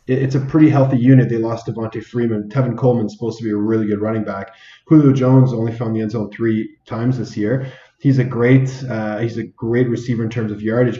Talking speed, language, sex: 235 wpm, English, male